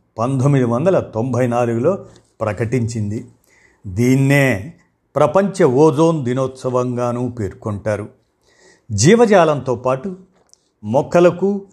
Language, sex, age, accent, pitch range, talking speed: Telugu, male, 50-69, native, 115-155 Hz, 65 wpm